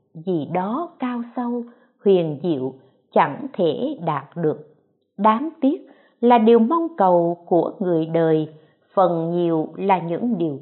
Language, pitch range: Vietnamese, 165-260 Hz